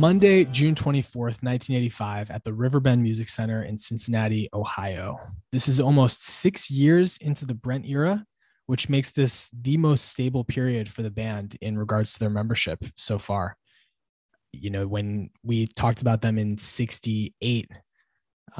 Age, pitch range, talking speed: 20-39, 105-130 Hz, 150 wpm